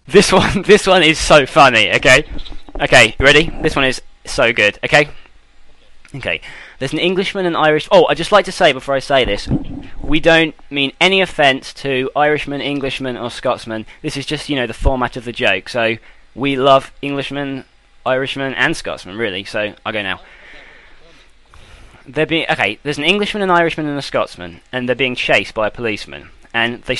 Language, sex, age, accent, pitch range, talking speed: English, male, 20-39, British, 120-155 Hz, 190 wpm